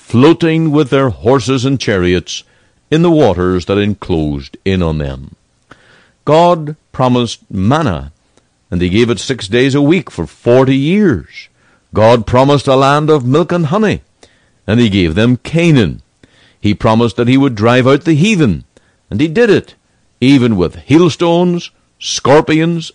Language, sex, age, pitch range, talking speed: English, male, 60-79, 90-140 Hz, 150 wpm